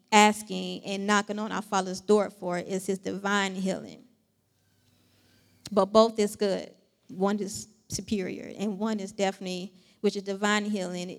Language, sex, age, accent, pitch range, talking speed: English, female, 20-39, American, 195-220 Hz, 150 wpm